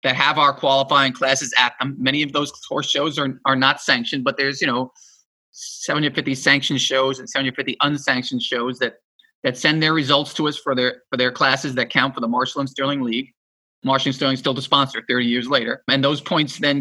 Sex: male